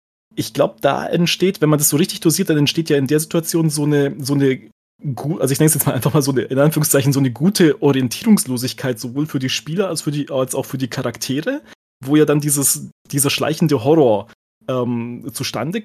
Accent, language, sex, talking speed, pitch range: German, German, male, 210 wpm, 130-165 Hz